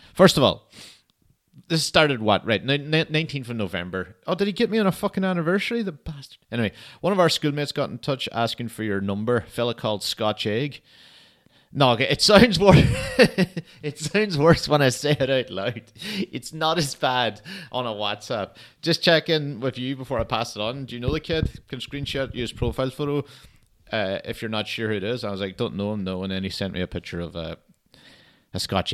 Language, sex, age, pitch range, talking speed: English, male, 30-49, 95-135 Hz, 215 wpm